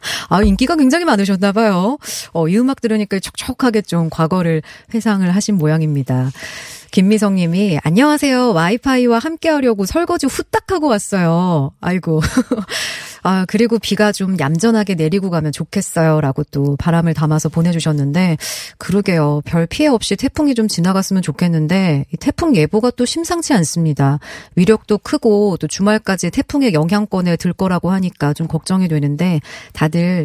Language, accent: Korean, native